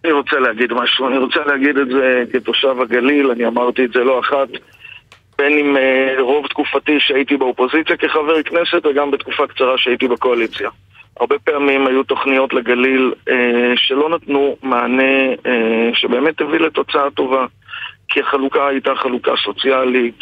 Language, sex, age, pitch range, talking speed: Hebrew, male, 40-59, 125-140 Hz, 150 wpm